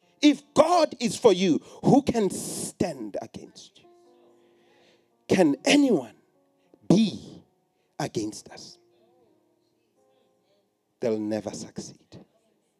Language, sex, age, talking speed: English, male, 40-59, 85 wpm